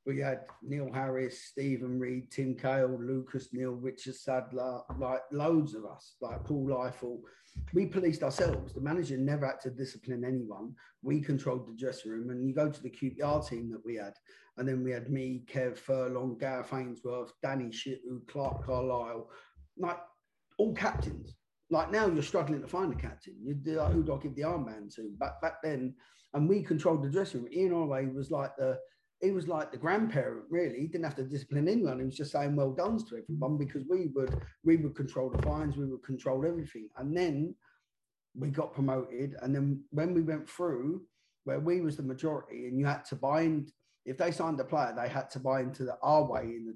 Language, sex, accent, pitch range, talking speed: English, male, British, 125-150 Hz, 205 wpm